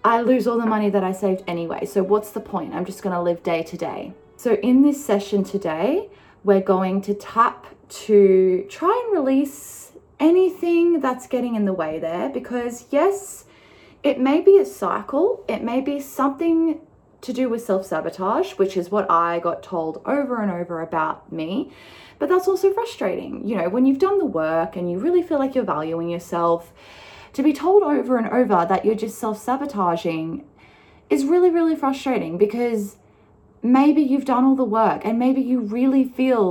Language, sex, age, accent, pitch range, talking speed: English, female, 20-39, Australian, 190-280 Hz, 185 wpm